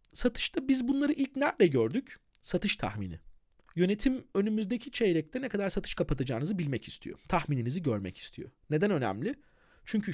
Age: 40-59